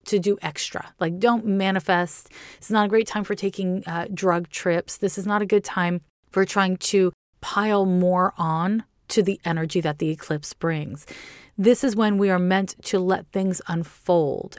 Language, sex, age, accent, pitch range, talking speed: English, female, 30-49, American, 170-200 Hz, 185 wpm